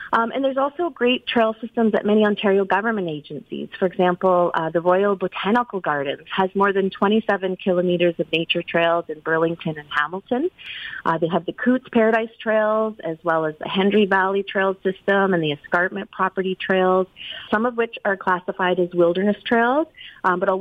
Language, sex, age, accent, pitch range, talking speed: English, female, 30-49, American, 175-220 Hz, 180 wpm